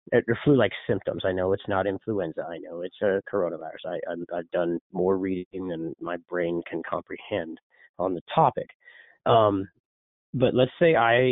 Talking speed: 155 wpm